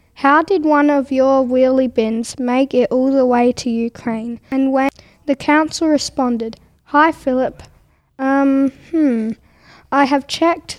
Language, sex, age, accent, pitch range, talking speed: English, female, 10-29, Australian, 250-280 Hz, 145 wpm